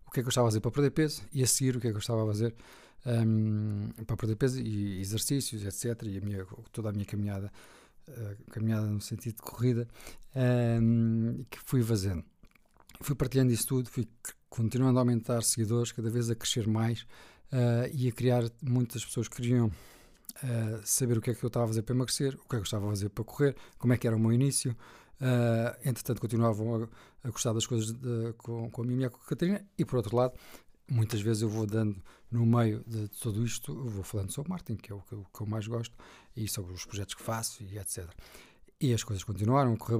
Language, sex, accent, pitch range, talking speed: Portuguese, male, Portuguese, 110-125 Hz, 235 wpm